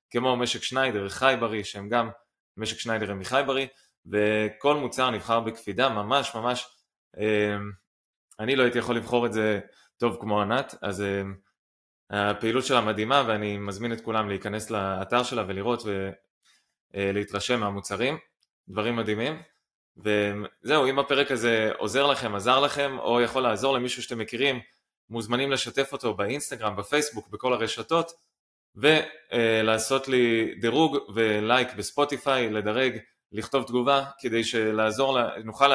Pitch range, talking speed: 105-130 Hz, 125 wpm